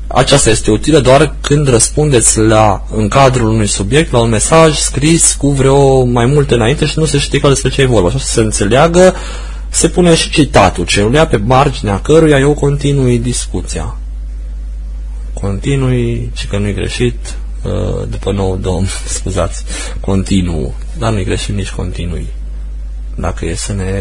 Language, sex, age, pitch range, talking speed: Romanian, male, 20-39, 90-120 Hz, 155 wpm